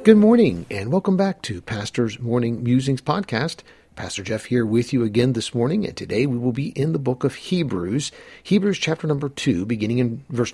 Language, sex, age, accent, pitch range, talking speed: English, male, 50-69, American, 100-140 Hz, 200 wpm